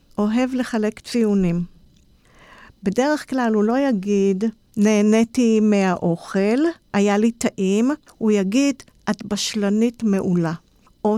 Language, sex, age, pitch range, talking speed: Hebrew, female, 50-69, 205-265 Hz, 100 wpm